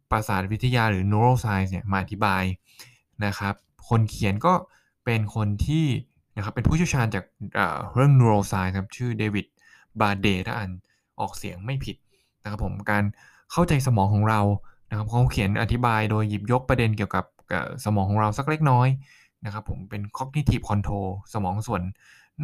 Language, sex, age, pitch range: Thai, male, 20-39, 100-130 Hz